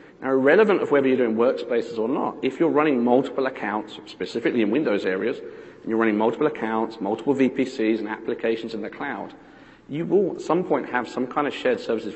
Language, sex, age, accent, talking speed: English, male, 40-59, British, 195 wpm